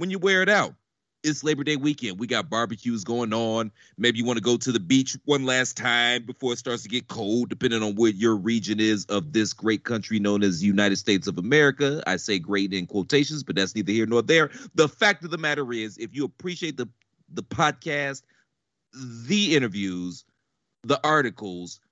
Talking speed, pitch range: 205 wpm, 110-160 Hz